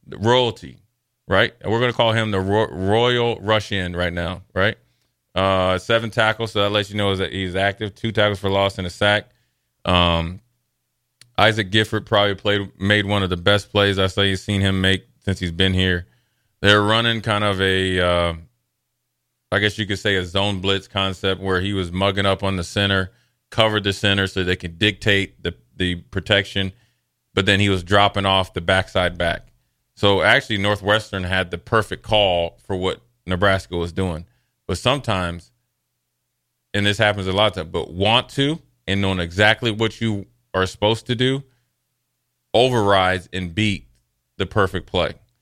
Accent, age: American, 30-49